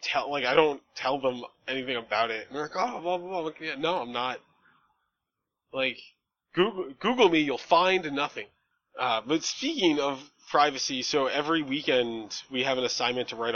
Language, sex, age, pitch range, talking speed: English, male, 20-39, 125-170 Hz, 175 wpm